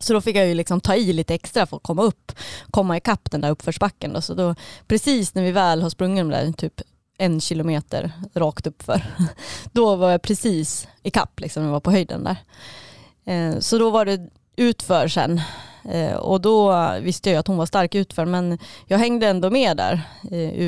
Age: 20-39